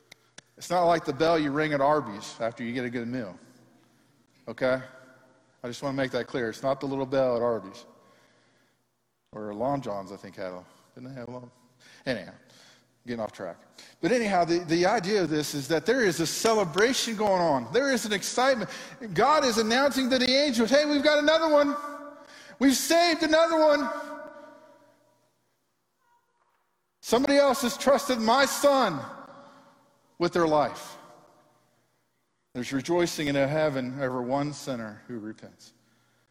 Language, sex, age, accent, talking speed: English, male, 50-69, American, 160 wpm